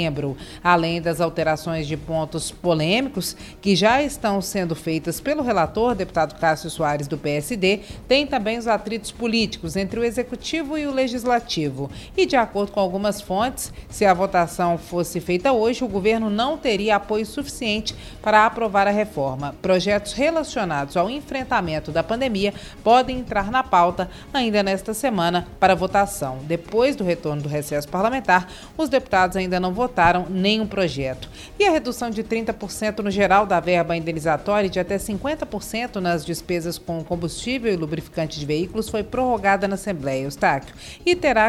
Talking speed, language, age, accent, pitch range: 155 wpm, Portuguese, 40-59, Brazilian, 170-225 Hz